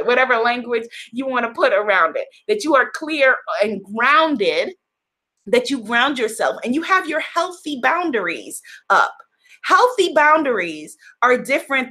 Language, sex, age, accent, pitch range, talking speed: English, female, 30-49, American, 205-285 Hz, 145 wpm